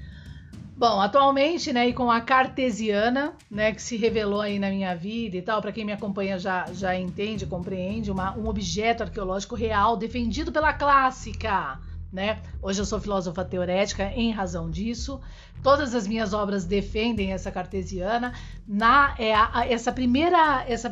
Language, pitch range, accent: Portuguese, 195-240 Hz, Brazilian